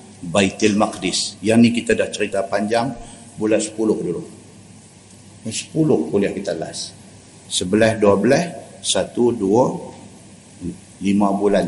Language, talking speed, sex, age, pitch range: Malay, 115 wpm, male, 50-69, 100-130 Hz